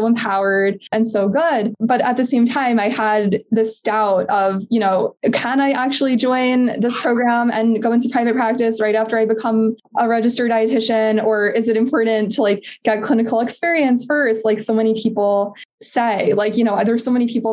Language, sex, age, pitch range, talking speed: English, female, 20-39, 210-235 Hz, 190 wpm